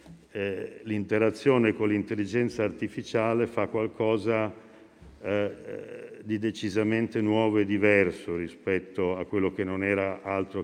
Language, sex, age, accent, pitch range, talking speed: Italian, male, 50-69, native, 90-110 Hz, 115 wpm